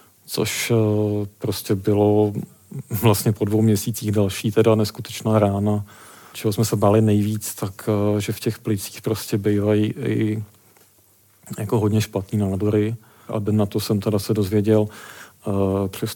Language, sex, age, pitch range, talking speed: Czech, male, 40-59, 105-110 Hz, 135 wpm